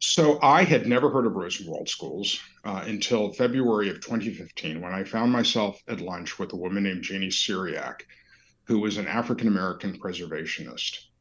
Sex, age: male, 50-69